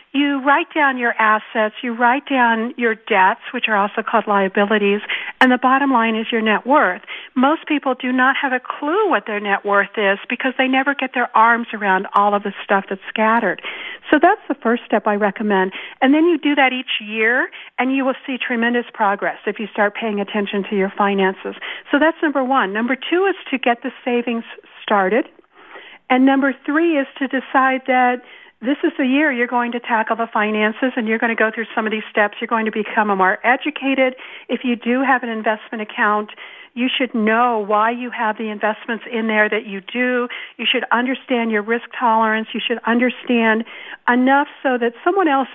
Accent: American